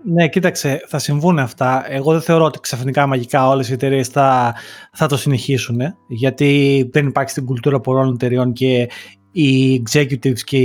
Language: Greek